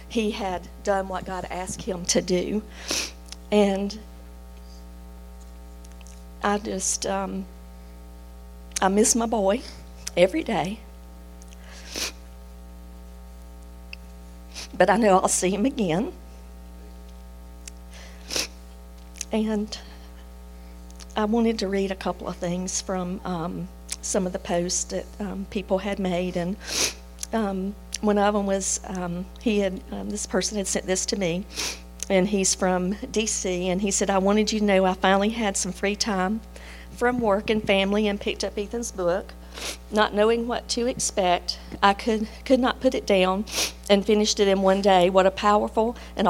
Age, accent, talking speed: 50-69, American, 145 wpm